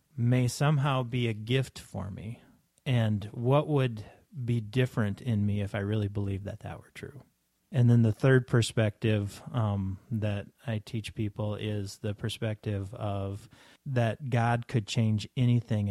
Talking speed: 155 wpm